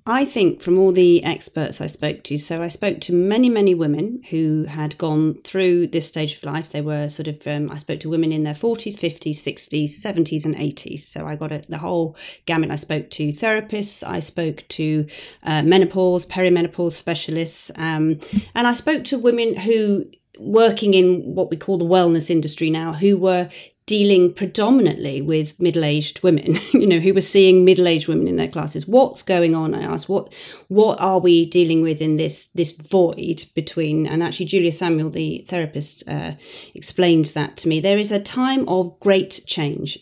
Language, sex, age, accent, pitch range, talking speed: English, female, 30-49, British, 155-190 Hz, 185 wpm